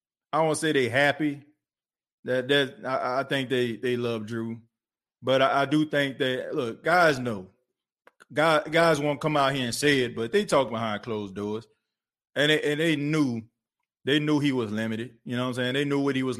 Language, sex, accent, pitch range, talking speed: English, male, American, 115-145 Hz, 220 wpm